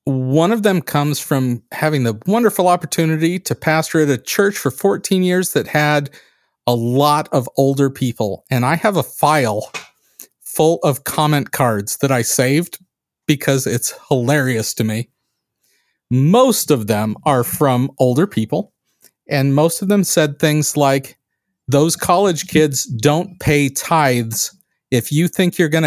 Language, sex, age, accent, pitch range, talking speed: English, male, 40-59, American, 135-185 Hz, 155 wpm